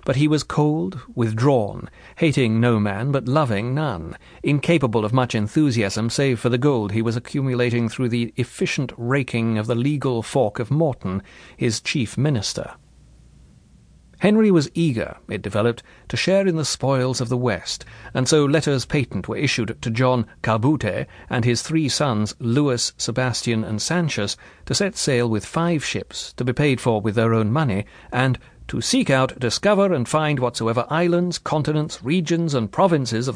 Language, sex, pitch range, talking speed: English, male, 110-145 Hz, 165 wpm